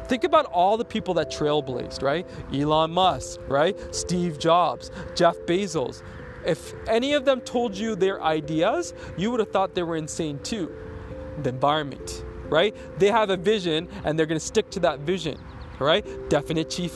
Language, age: English, 20-39